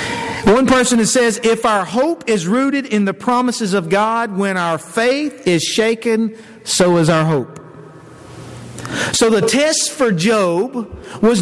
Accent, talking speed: American, 145 wpm